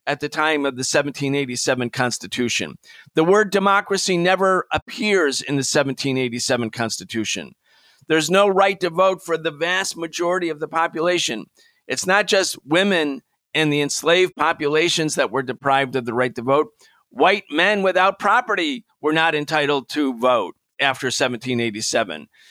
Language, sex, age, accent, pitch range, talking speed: English, male, 50-69, American, 140-185 Hz, 145 wpm